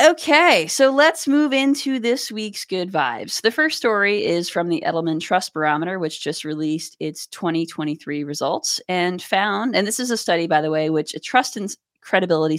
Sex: female